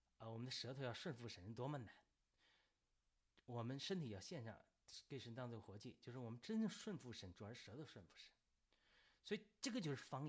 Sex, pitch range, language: male, 110-145 Hz, Chinese